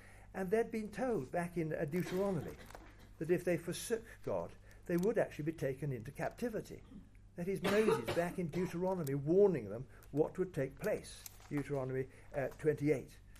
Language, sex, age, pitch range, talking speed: English, male, 60-79, 100-170 Hz, 150 wpm